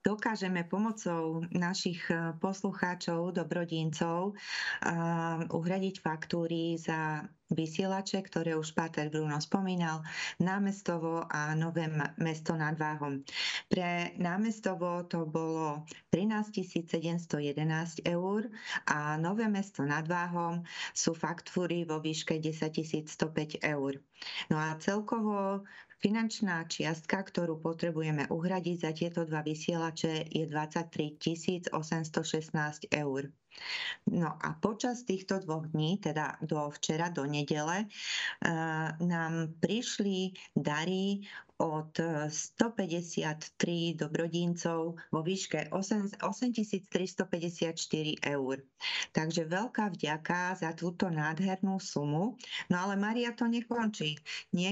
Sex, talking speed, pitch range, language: female, 100 wpm, 160-195 Hz, Slovak